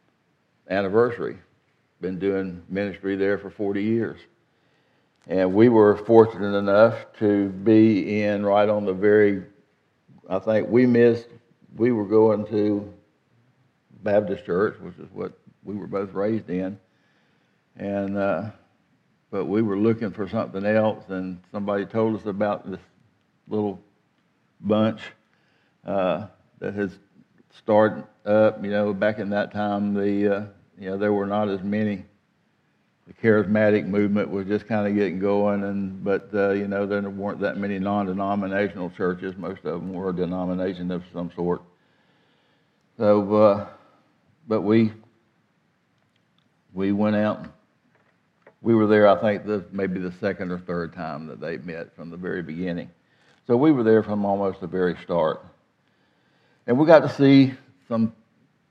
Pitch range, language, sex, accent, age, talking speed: 95-110 Hz, English, male, American, 60-79, 145 wpm